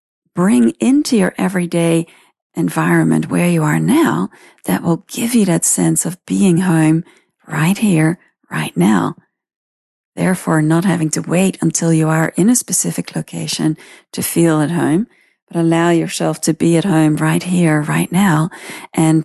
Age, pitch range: 40-59, 160-200 Hz